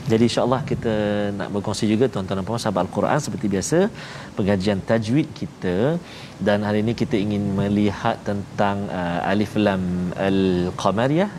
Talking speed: 140 wpm